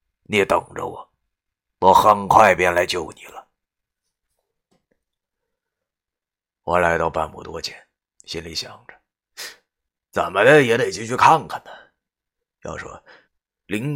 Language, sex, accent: Chinese, male, native